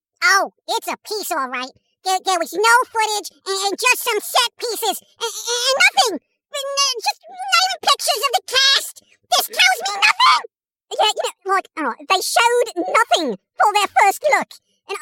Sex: male